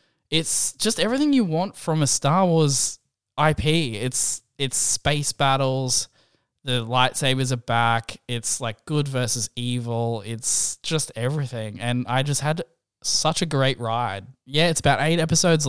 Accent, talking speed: Australian, 150 wpm